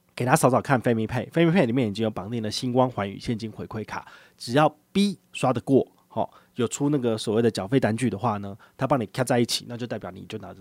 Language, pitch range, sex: Chinese, 110-145 Hz, male